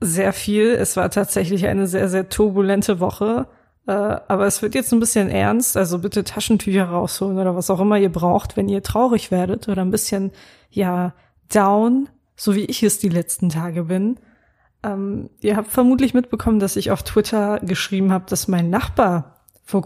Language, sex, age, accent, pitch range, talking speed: German, female, 20-39, German, 190-210 Hz, 180 wpm